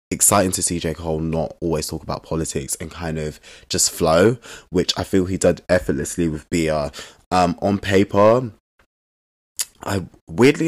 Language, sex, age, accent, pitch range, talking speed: English, male, 20-39, British, 80-90 Hz, 155 wpm